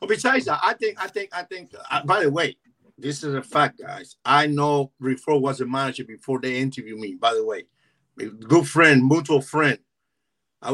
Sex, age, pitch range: male, 50-69, 140-180 Hz